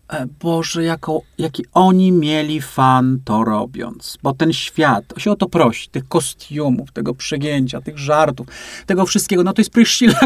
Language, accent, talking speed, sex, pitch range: Polish, native, 160 wpm, male, 130-175 Hz